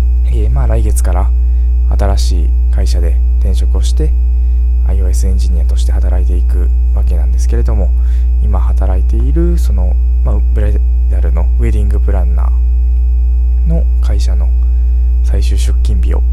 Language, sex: Japanese, male